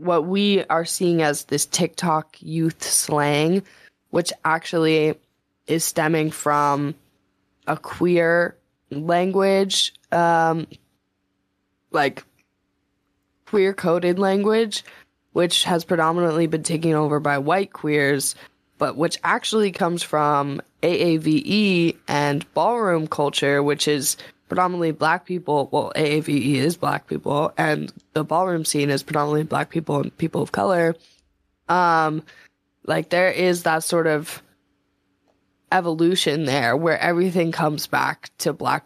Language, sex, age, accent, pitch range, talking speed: English, female, 20-39, American, 140-170 Hz, 120 wpm